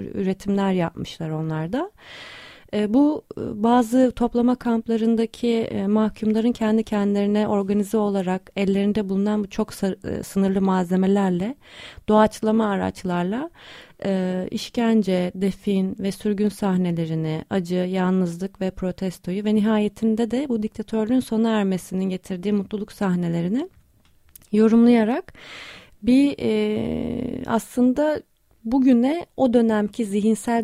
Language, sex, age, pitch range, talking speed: Turkish, female, 30-49, 185-230 Hz, 90 wpm